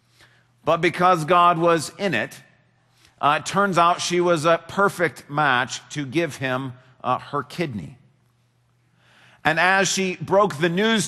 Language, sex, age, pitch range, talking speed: English, male, 40-59, 150-190 Hz, 145 wpm